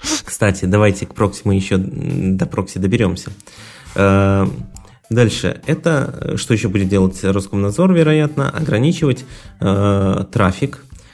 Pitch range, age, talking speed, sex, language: 100-125 Hz, 20-39, 100 wpm, male, Russian